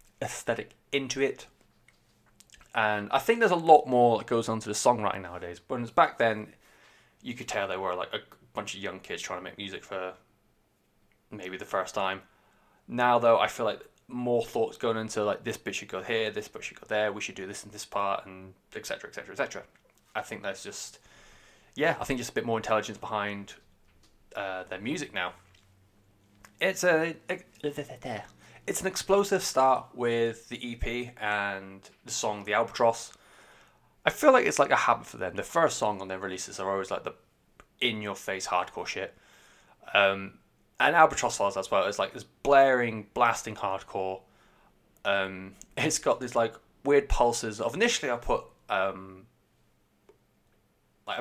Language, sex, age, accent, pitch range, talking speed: English, male, 20-39, British, 95-120 Hz, 180 wpm